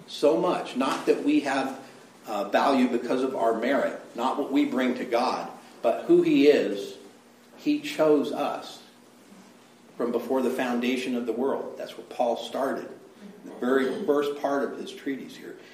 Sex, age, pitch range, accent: male, 50-69, 120-150 Hz, American